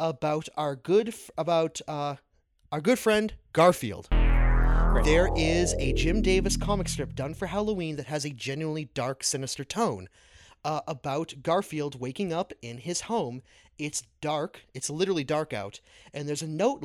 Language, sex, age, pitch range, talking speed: English, male, 30-49, 135-165 Hz, 155 wpm